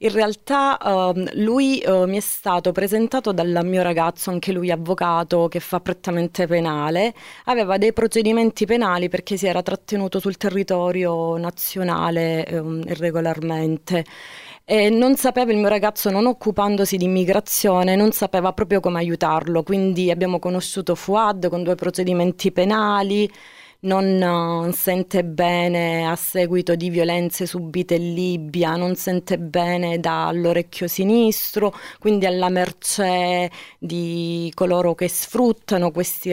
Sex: female